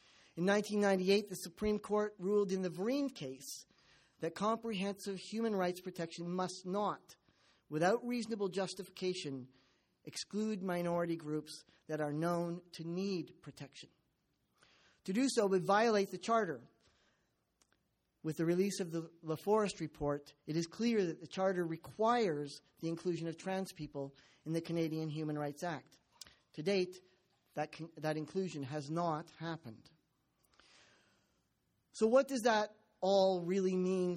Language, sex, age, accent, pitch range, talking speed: English, male, 50-69, American, 160-200 Hz, 135 wpm